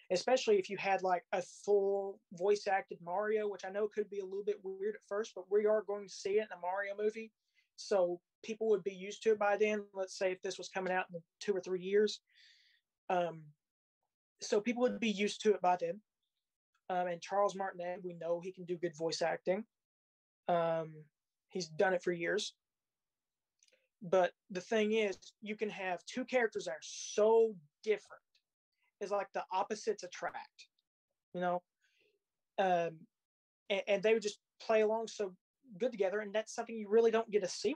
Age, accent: 20-39, American